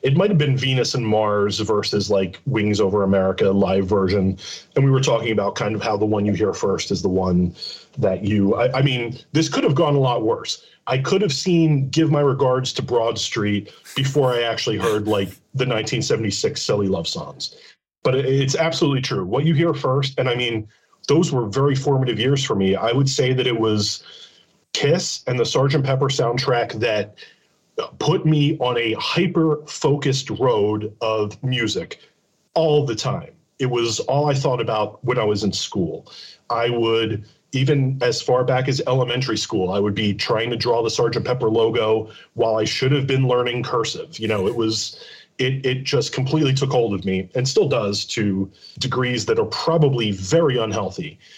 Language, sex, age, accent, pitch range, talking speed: English, male, 30-49, American, 110-140 Hz, 190 wpm